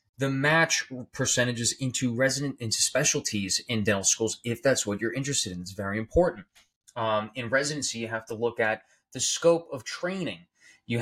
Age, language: 20-39, English